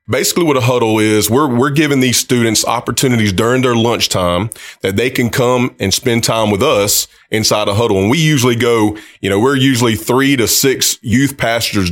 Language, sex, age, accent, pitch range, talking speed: English, male, 30-49, American, 100-120 Hz, 195 wpm